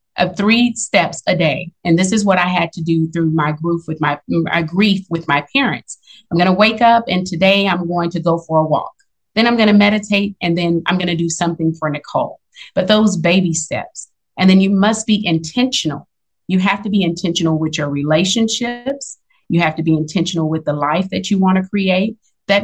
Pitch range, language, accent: 170-225 Hz, English, American